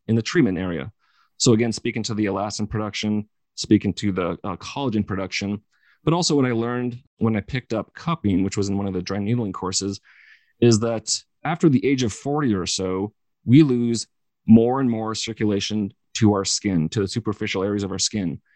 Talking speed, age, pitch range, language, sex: 195 wpm, 30-49, 95-115 Hz, English, male